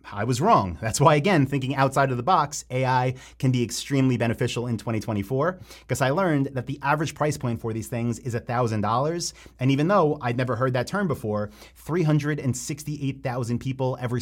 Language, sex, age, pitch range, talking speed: English, male, 30-49, 115-140 Hz, 180 wpm